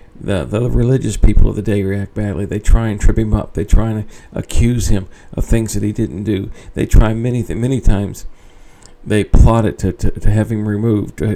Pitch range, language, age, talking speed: 95-115 Hz, English, 50-69, 215 wpm